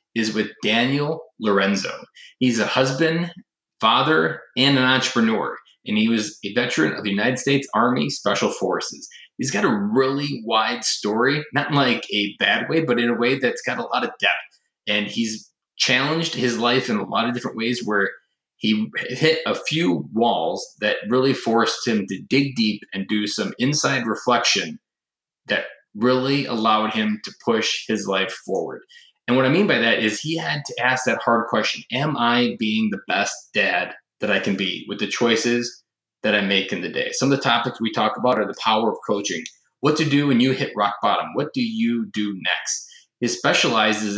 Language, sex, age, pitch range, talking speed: English, male, 20-39, 110-140 Hz, 195 wpm